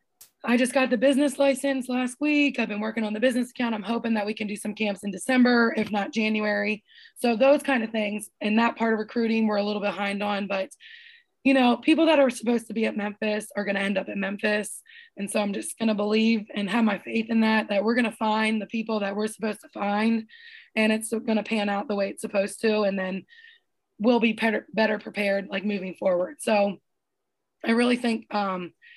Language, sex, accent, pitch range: English, female, American, 205-245 Hz